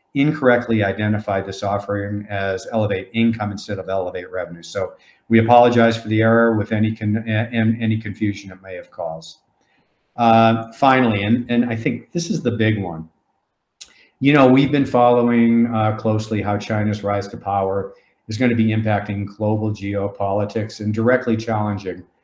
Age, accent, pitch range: 50-69, American, 100-115 Hz